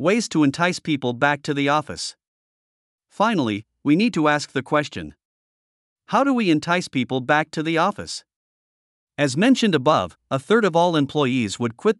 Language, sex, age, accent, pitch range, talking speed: English, male, 50-69, American, 125-170 Hz, 170 wpm